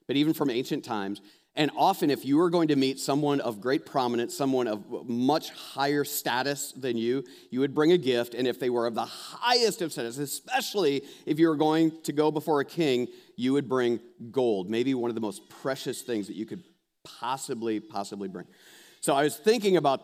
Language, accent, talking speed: English, American, 210 wpm